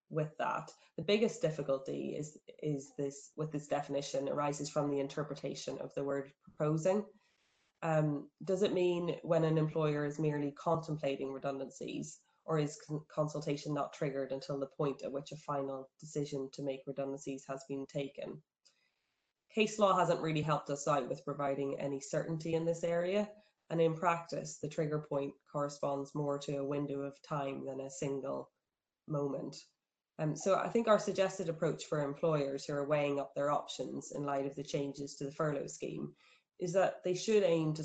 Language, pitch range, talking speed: English, 140-160 Hz, 175 wpm